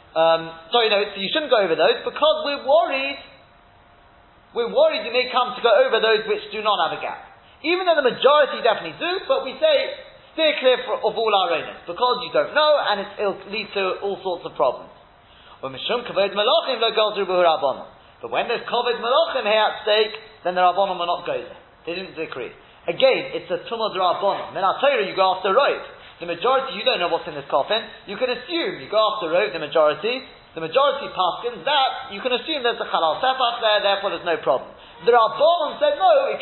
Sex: male